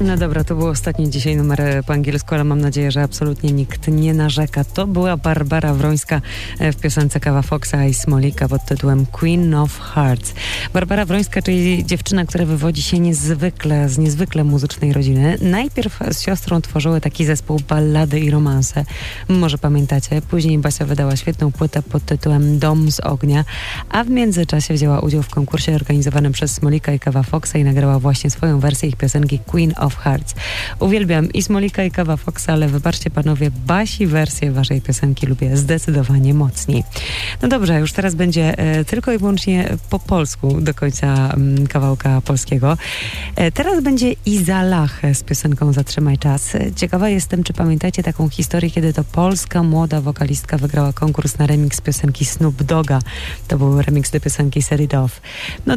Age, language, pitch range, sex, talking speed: 20-39, Polish, 140-165 Hz, female, 165 wpm